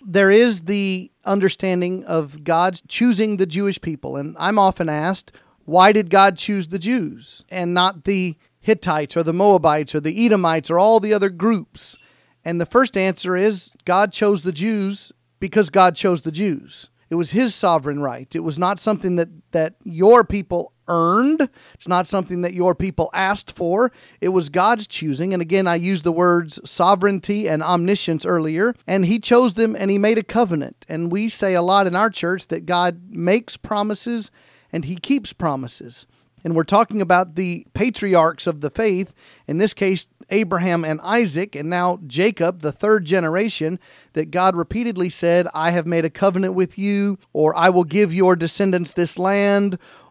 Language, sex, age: English, male, 40-59